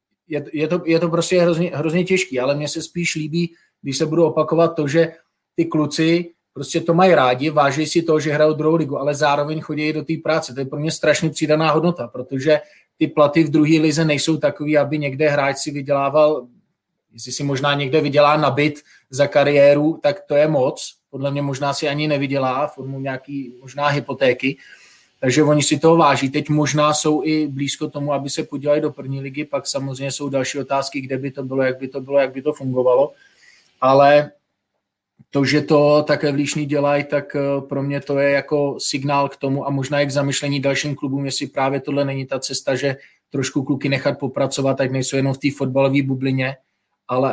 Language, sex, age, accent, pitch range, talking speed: Czech, male, 20-39, native, 135-155 Hz, 200 wpm